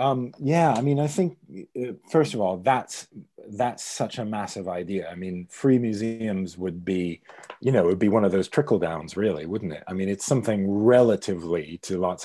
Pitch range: 95-125 Hz